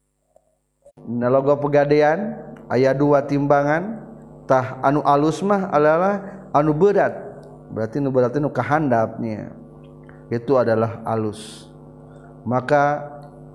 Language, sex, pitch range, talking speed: Indonesian, male, 115-135 Hz, 90 wpm